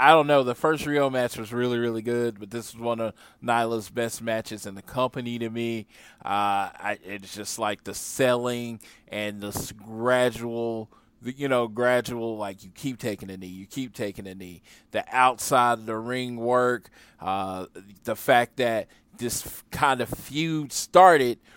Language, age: English, 20-39